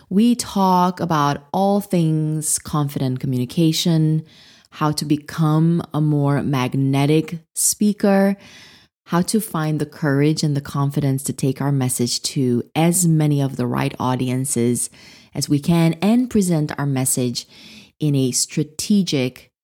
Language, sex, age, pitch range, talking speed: English, female, 20-39, 135-165 Hz, 130 wpm